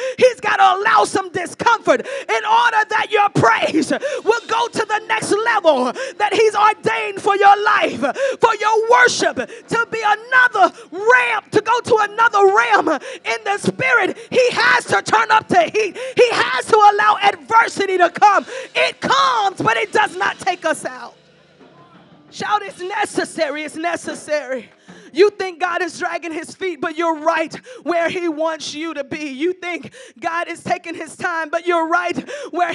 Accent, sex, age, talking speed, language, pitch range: American, female, 30-49, 170 wpm, English, 340-430 Hz